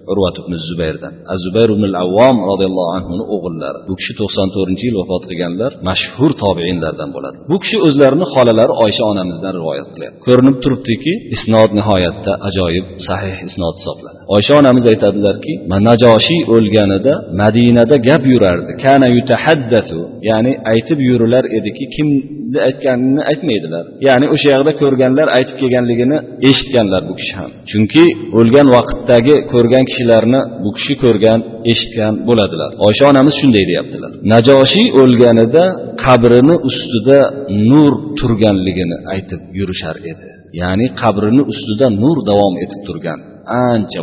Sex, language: male, Russian